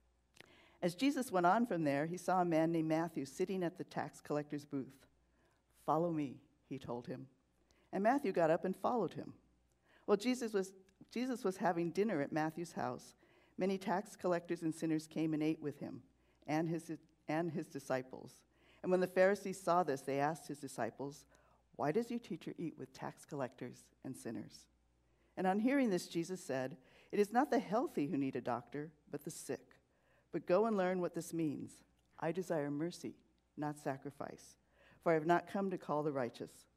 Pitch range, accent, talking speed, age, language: 135-195 Hz, American, 185 wpm, 50-69, English